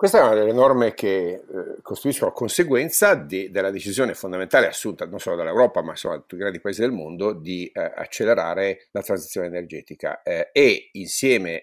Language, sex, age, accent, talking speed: Italian, male, 50-69, native, 175 wpm